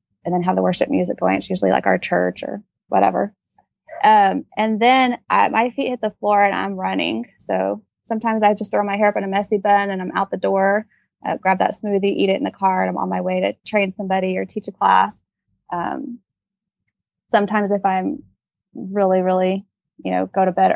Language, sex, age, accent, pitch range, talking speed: English, female, 20-39, American, 185-205 Hz, 215 wpm